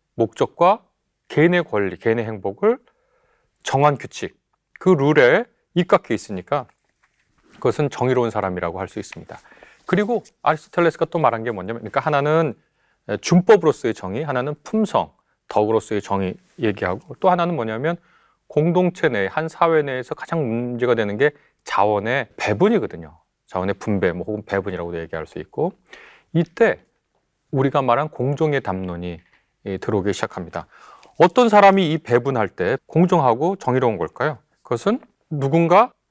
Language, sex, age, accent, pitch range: Korean, male, 30-49, native, 110-170 Hz